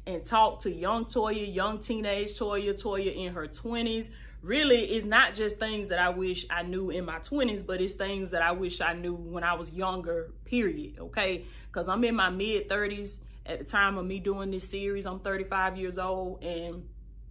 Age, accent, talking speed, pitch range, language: 20-39, American, 200 wpm, 180-215 Hz, English